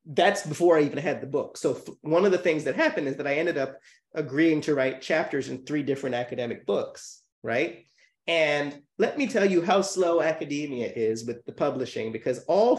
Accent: American